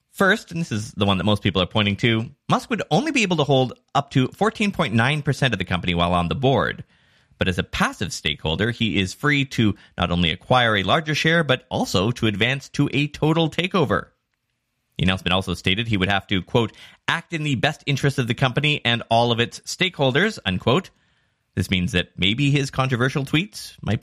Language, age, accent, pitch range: English, 30-49, American, 95-155 Hz